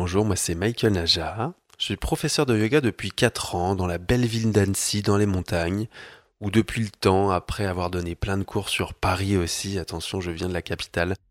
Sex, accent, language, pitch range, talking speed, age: male, French, French, 90-110 Hz, 210 wpm, 20-39